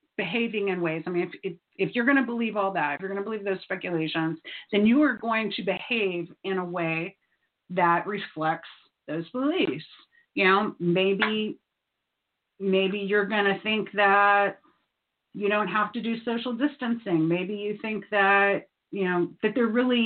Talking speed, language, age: 175 wpm, English, 40-59